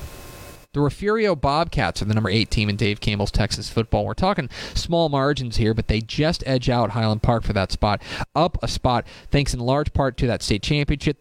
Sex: male